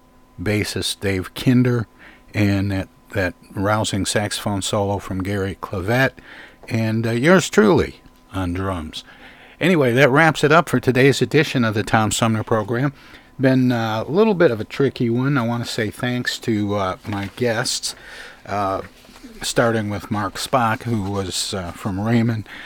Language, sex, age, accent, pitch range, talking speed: English, male, 60-79, American, 100-120 Hz, 155 wpm